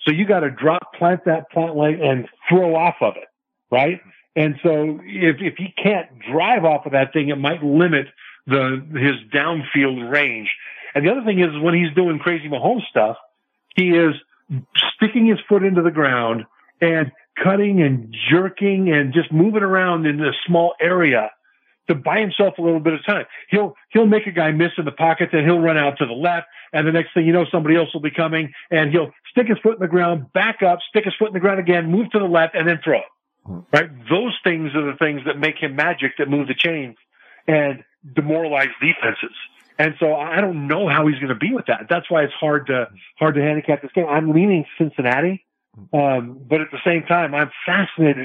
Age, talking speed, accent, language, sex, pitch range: 50-69, 215 wpm, American, English, male, 145-175 Hz